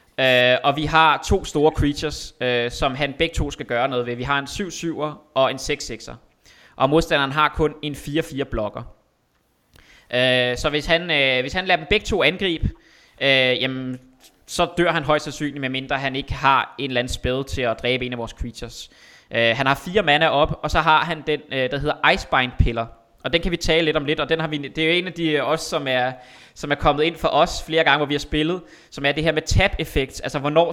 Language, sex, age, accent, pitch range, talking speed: Danish, male, 20-39, native, 130-160 Hz, 235 wpm